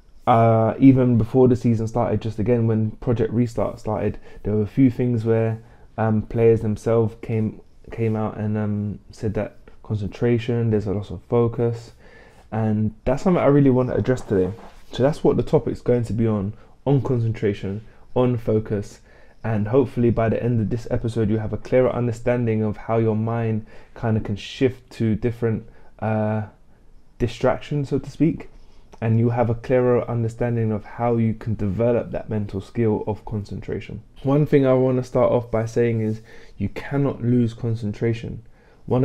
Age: 20-39